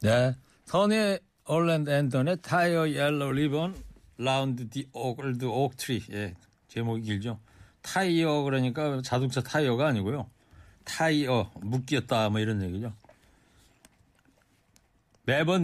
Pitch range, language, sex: 115-150 Hz, Korean, male